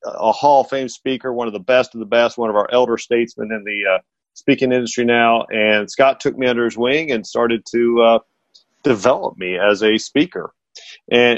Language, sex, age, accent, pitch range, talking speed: English, male, 40-59, American, 110-130 Hz, 210 wpm